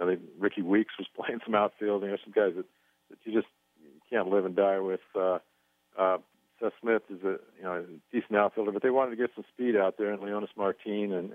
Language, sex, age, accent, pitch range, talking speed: English, male, 50-69, American, 90-100 Hz, 245 wpm